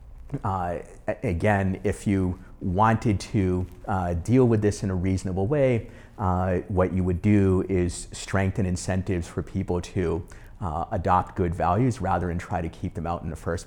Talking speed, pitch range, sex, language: 170 wpm, 90-100 Hz, male, English